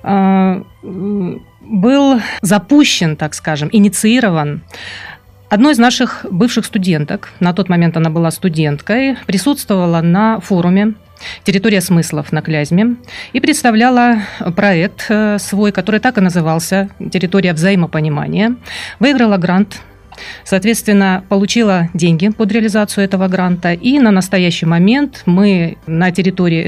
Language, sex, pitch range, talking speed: Russian, female, 175-225 Hz, 110 wpm